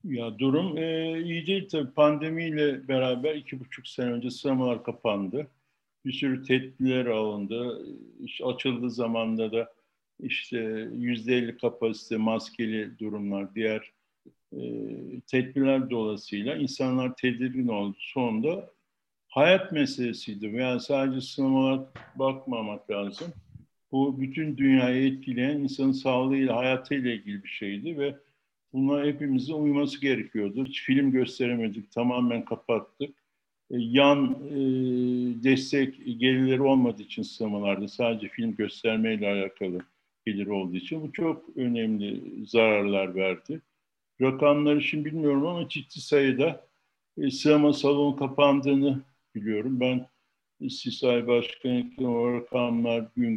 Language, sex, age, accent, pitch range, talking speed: Turkish, male, 60-79, native, 115-140 Hz, 110 wpm